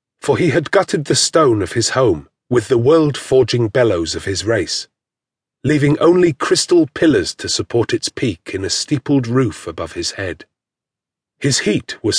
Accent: British